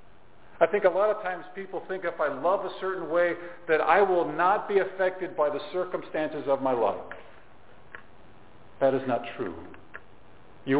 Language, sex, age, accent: English, male, 50-69, American